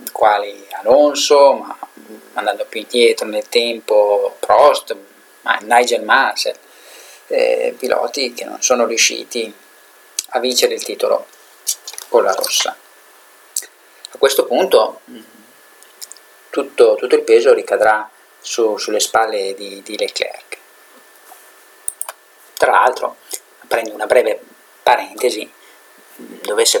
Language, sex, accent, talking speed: Italian, male, native, 100 wpm